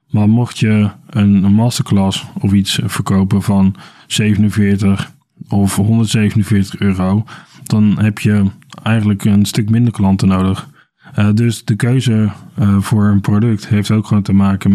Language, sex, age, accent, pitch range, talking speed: Dutch, male, 20-39, Dutch, 100-110 Hz, 140 wpm